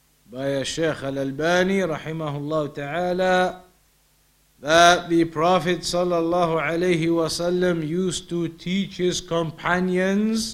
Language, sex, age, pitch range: English, male, 50-69, 170-195 Hz